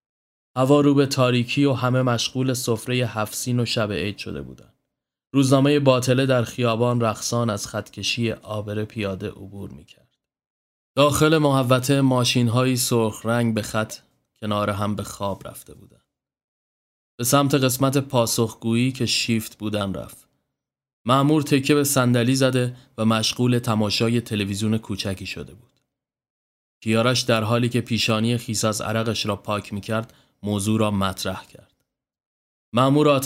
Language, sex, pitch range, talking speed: Persian, male, 105-130 Hz, 130 wpm